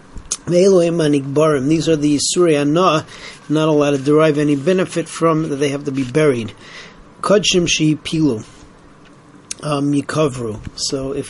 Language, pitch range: English, 140-160 Hz